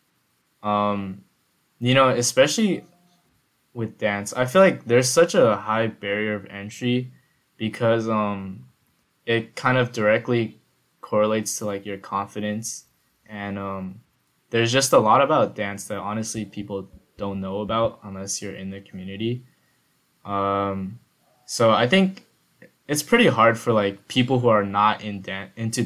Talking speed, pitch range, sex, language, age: 145 wpm, 100-120 Hz, male, English, 10-29